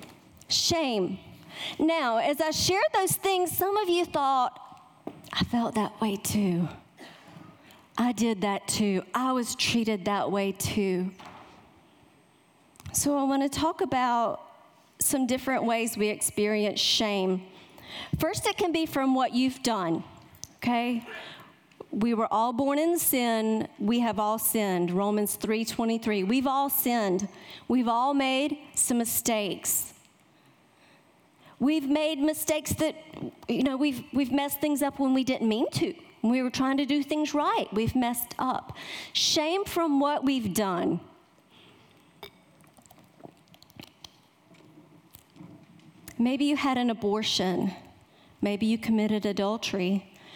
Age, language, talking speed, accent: 40-59, English, 130 wpm, American